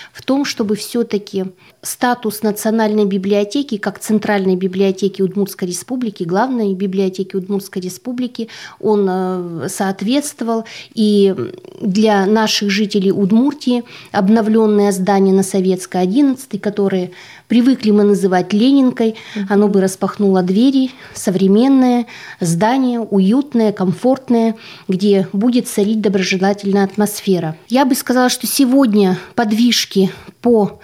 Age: 20-39